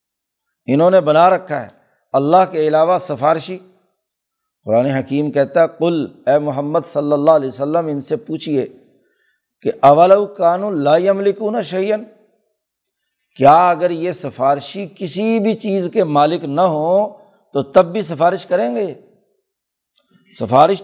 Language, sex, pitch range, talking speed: Urdu, male, 150-200 Hz, 130 wpm